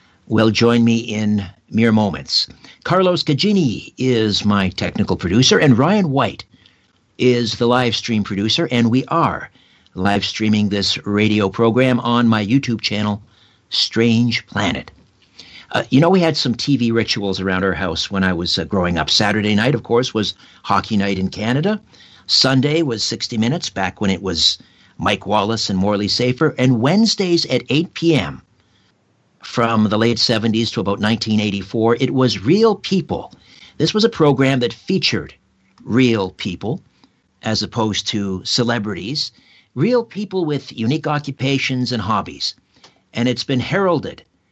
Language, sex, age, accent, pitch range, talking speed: English, male, 50-69, American, 105-135 Hz, 150 wpm